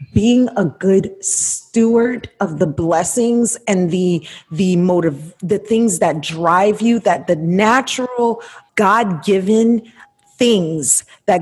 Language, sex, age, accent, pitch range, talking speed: English, female, 30-49, American, 180-225 Hz, 115 wpm